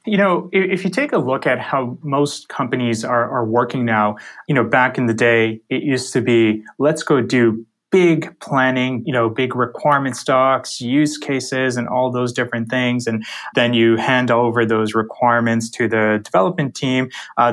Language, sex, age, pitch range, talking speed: English, male, 20-39, 115-145 Hz, 185 wpm